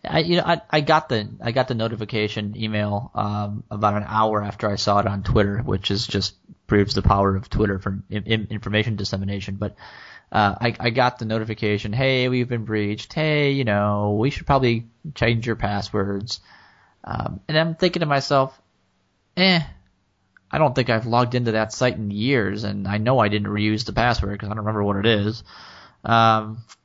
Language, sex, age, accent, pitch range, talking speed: English, male, 20-39, American, 105-120 Hz, 190 wpm